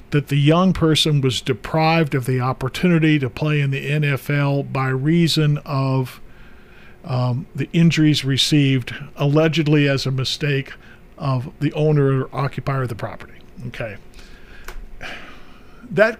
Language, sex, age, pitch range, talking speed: English, male, 50-69, 135-160 Hz, 130 wpm